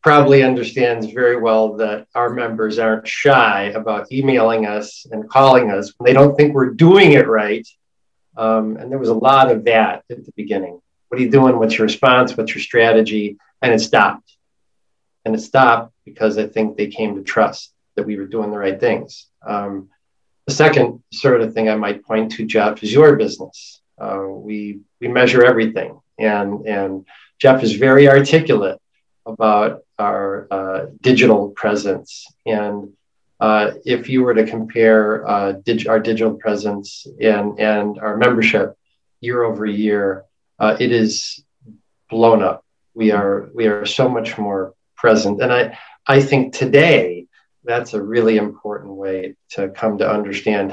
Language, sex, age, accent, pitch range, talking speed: English, male, 40-59, American, 105-125 Hz, 165 wpm